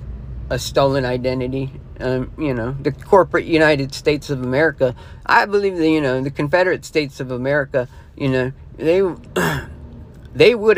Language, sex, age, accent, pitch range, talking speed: English, male, 40-59, American, 135-190 Hz, 150 wpm